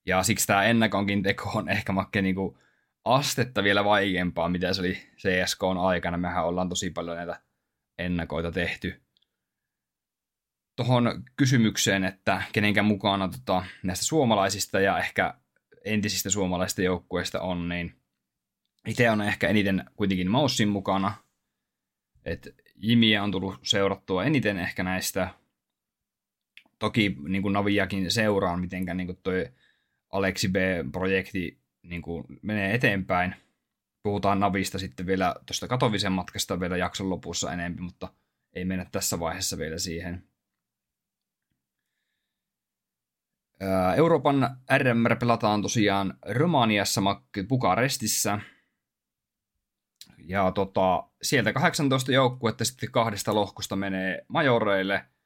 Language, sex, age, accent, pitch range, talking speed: Finnish, male, 20-39, native, 90-110 Hz, 110 wpm